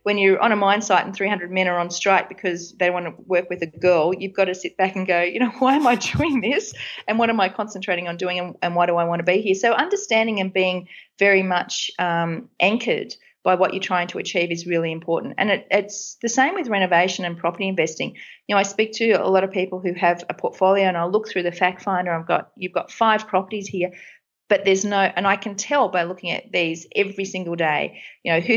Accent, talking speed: Australian, 250 wpm